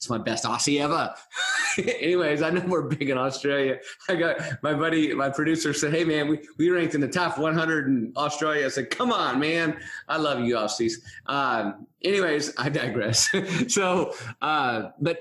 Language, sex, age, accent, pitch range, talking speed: English, male, 30-49, American, 115-155 Hz, 180 wpm